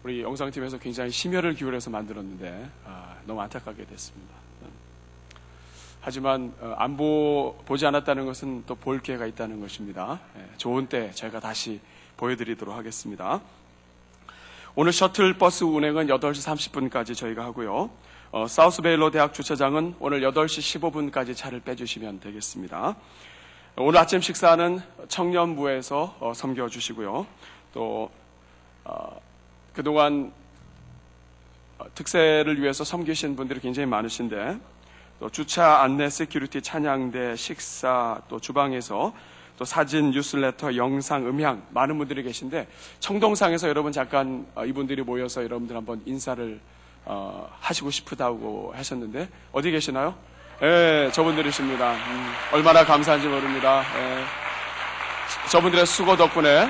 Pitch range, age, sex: 110-150 Hz, 40-59, male